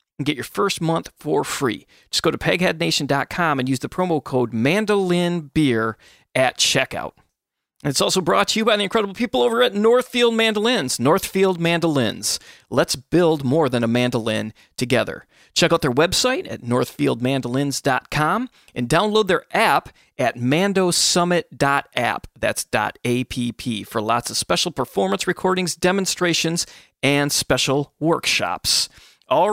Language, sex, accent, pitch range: English, male, American, 125-180 Hz